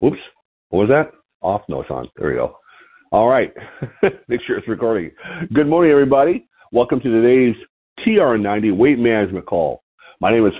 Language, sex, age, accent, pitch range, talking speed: English, male, 50-69, American, 105-140 Hz, 170 wpm